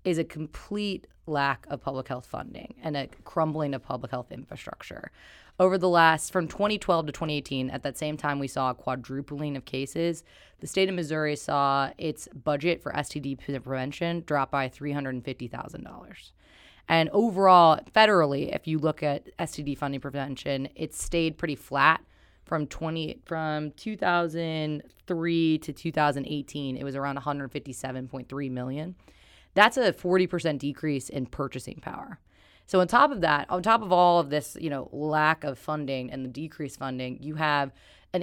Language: English